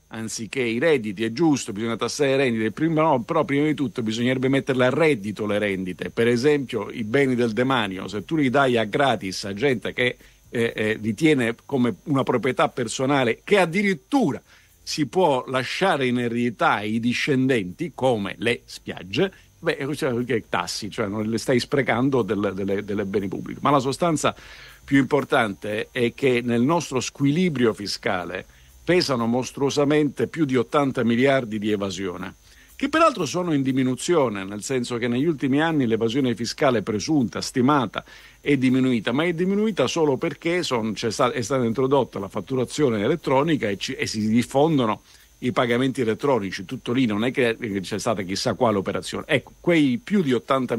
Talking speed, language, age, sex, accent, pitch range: 165 wpm, Italian, 50-69, male, native, 110-140 Hz